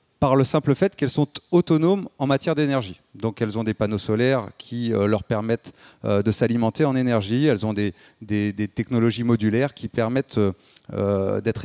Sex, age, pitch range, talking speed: male, 30-49, 115-150 Hz, 185 wpm